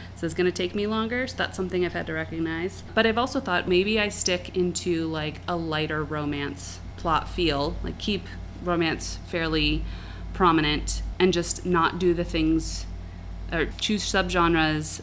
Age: 30-49